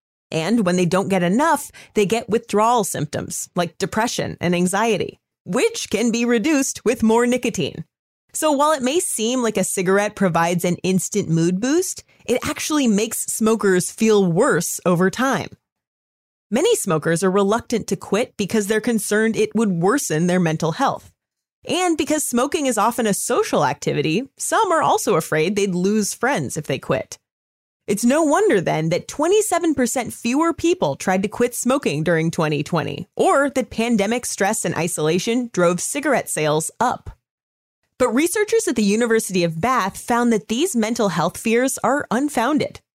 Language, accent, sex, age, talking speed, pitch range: English, American, female, 30-49, 160 wpm, 180-250 Hz